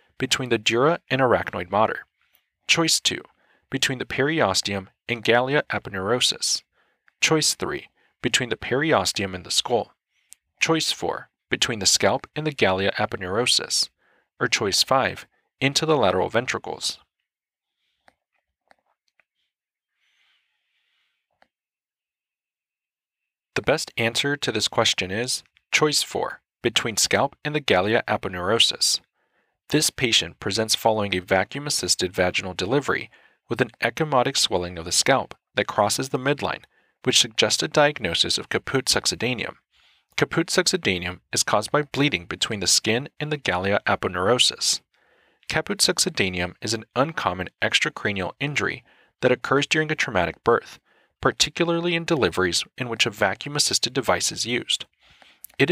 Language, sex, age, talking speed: English, male, 40-59, 125 wpm